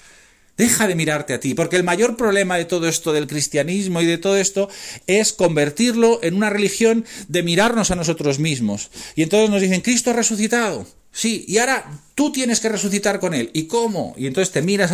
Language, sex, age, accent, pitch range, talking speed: Spanish, male, 40-59, Spanish, 140-200 Hz, 200 wpm